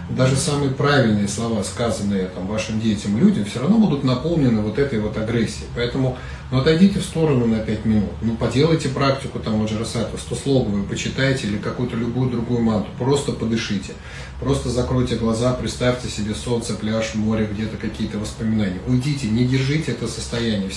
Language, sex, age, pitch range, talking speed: Russian, male, 30-49, 105-130 Hz, 170 wpm